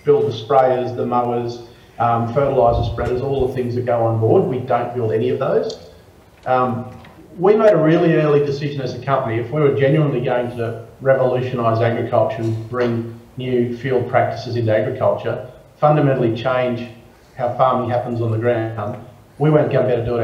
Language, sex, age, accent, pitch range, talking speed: English, male, 40-59, Australian, 115-135 Hz, 185 wpm